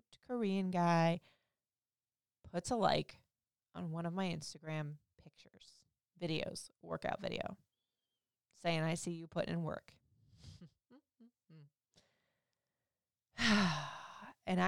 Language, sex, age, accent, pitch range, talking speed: English, female, 20-39, American, 160-215 Hz, 90 wpm